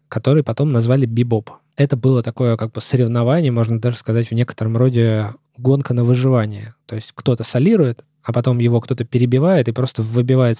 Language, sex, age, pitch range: Russian, male, 20-39, 115-135 Hz